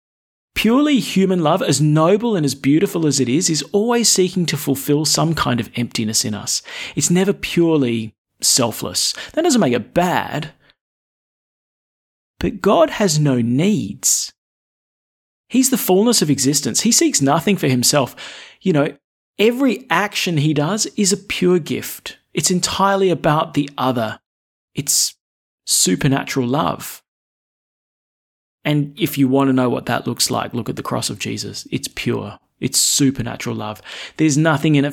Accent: Australian